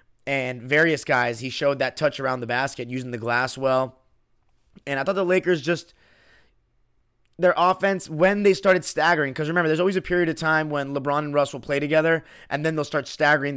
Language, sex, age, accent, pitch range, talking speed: English, male, 20-39, American, 130-160 Hz, 205 wpm